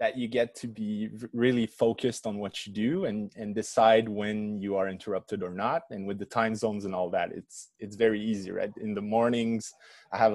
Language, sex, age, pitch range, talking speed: English, male, 20-39, 105-140 Hz, 220 wpm